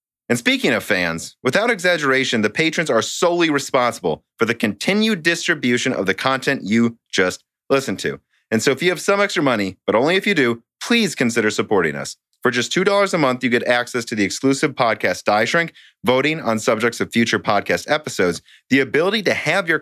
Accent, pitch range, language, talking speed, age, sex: American, 105-145 Hz, English, 195 wpm, 30-49, male